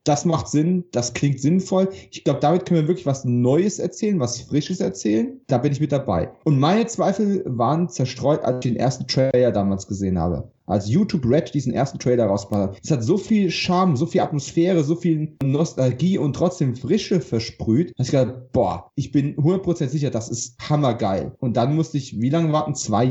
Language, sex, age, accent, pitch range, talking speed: German, male, 30-49, German, 120-165 Hz, 200 wpm